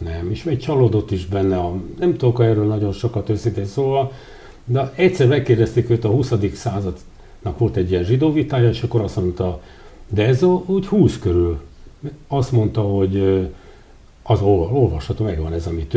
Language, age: English, 60-79